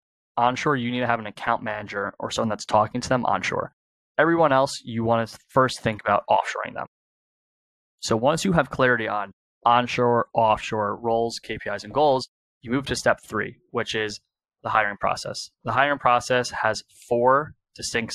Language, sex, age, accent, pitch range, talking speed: English, male, 20-39, American, 110-130 Hz, 175 wpm